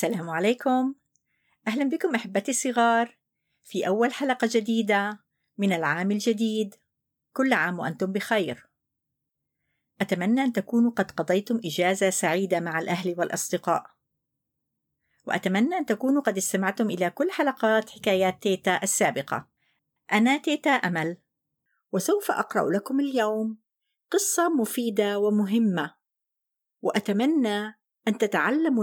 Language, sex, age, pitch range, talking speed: Arabic, female, 50-69, 195-255 Hz, 105 wpm